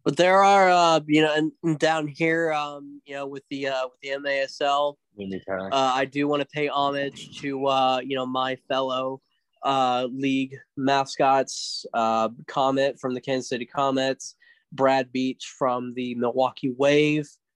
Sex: male